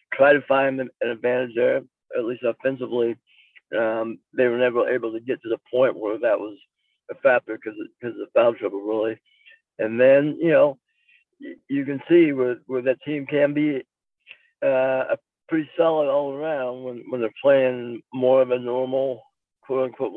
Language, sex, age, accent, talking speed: English, male, 60-79, American, 180 wpm